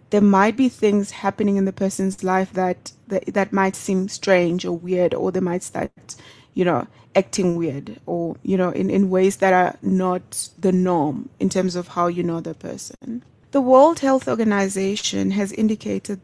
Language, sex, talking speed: English, female, 185 wpm